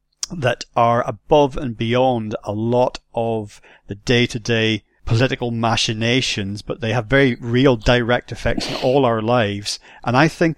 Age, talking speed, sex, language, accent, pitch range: 40-59, 145 wpm, male, English, British, 110-125 Hz